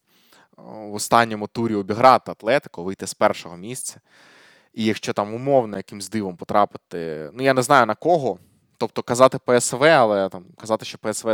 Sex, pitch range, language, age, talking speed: male, 95-125 Hz, Ukrainian, 20-39, 160 wpm